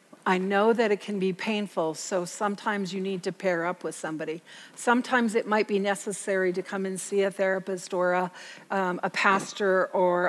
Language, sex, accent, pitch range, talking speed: English, female, American, 190-220 Hz, 185 wpm